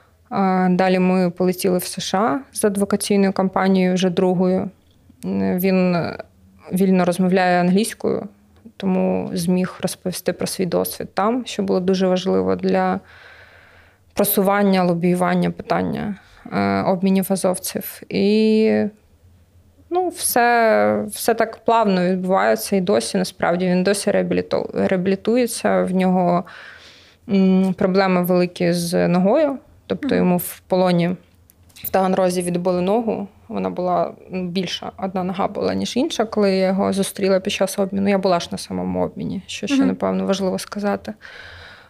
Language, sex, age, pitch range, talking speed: Ukrainian, female, 20-39, 175-200 Hz, 120 wpm